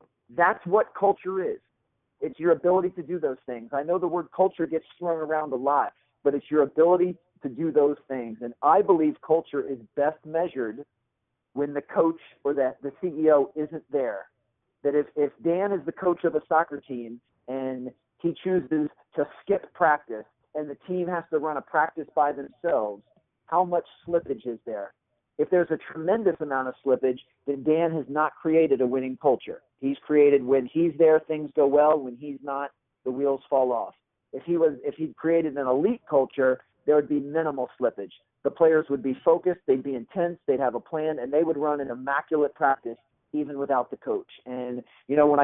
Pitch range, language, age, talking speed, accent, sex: 130-160 Hz, English, 50-69, 195 wpm, American, male